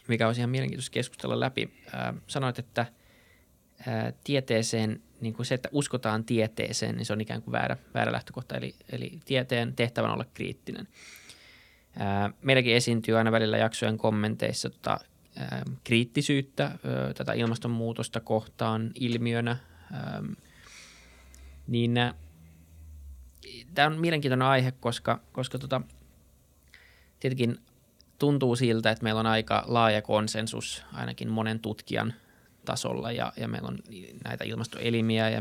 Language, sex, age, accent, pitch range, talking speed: Finnish, male, 20-39, native, 100-125 Hz, 110 wpm